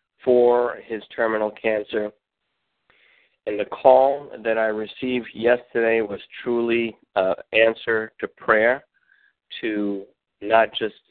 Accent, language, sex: American, English, male